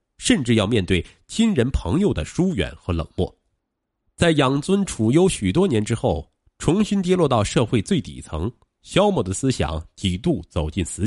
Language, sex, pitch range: Chinese, male, 95-140 Hz